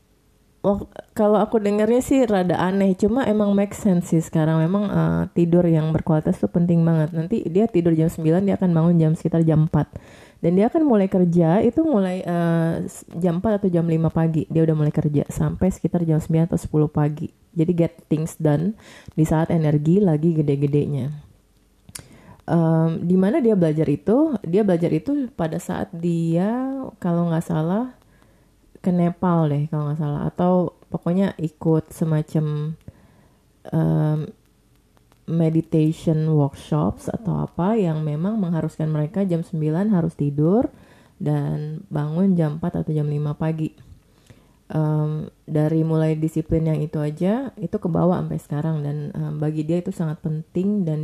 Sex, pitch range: female, 155-180 Hz